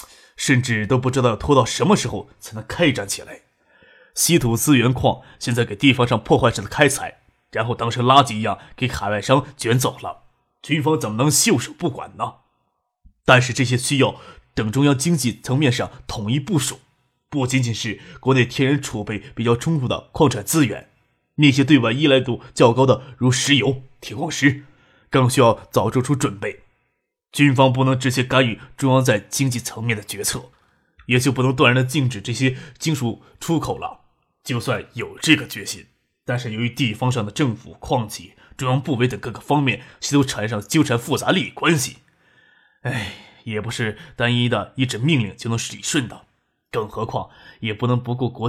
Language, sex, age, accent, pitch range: Chinese, male, 20-39, native, 115-140 Hz